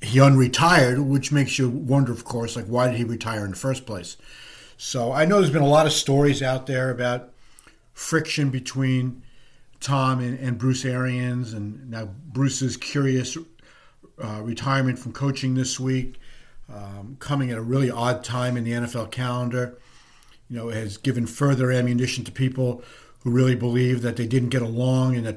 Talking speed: 180 wpm